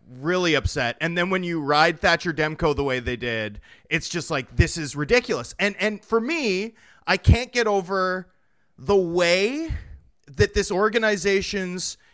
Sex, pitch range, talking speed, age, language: male, 170-225 Hz, 160 wpm, 30-49, English